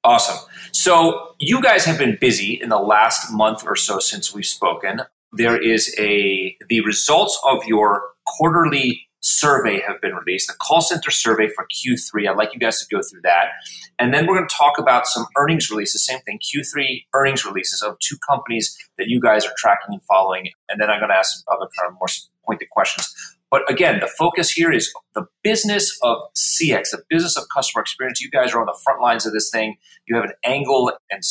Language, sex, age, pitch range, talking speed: English, male, 30-49, 110-170 Hz, 210 wpm